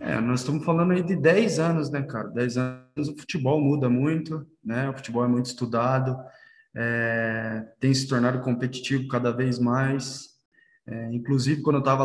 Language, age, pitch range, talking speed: Portuguese, 20-39, 125-150 Hz, 175 wpm